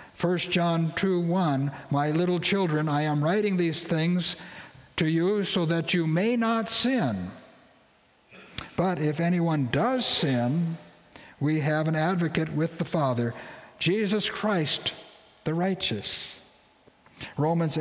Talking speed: 125 wpm